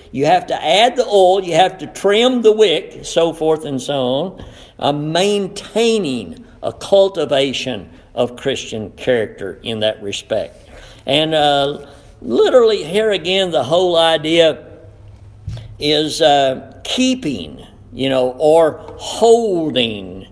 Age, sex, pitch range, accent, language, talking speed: 60-79, male, 120-190 Hz, American, English, 125 wpm